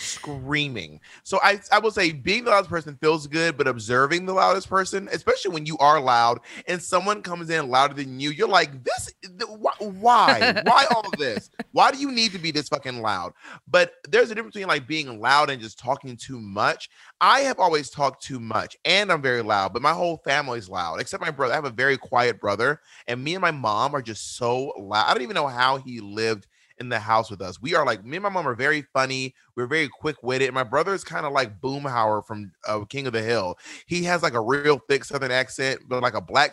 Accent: American